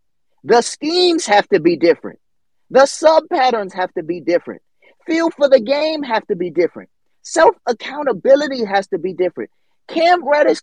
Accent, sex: American, male